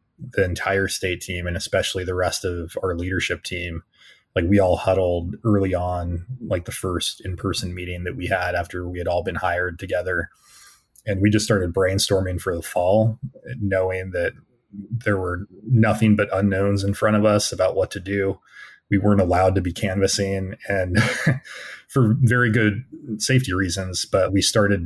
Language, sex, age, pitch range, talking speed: English, male, 30-49, 90-105 Hz, 170 wpm